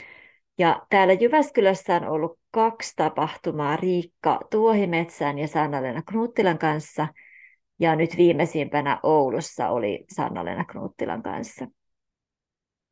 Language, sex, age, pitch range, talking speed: Finnish, female, 30-49, 160-225 Hz, 100 wpm